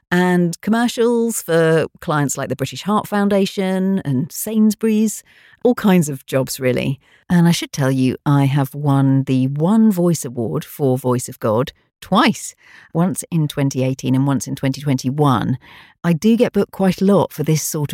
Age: 40-59